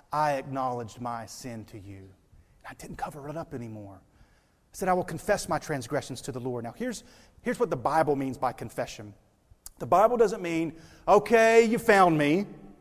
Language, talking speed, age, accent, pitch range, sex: English, 185 wpm, 40-59, American, 135-185 Hz, male